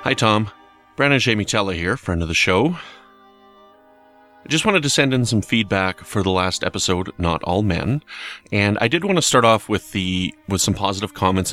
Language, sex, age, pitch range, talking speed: English, male, 30-49, 90-115 Hz, 200 wpm